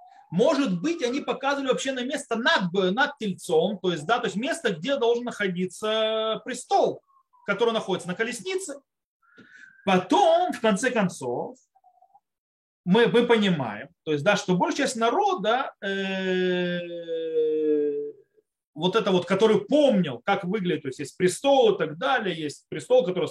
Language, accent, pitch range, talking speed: Russian, native, 180-270 Hz, 145 wpm